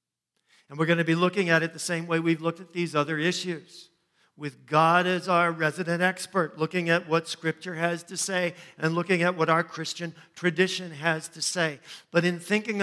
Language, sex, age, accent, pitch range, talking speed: English, male, 50-69, American, 160-195 Hz, 200 wpm